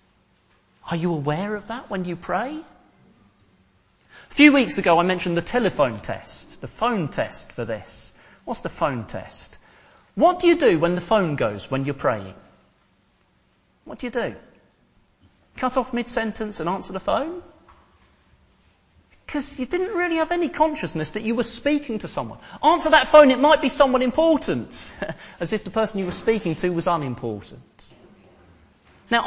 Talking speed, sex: 165 wpm, male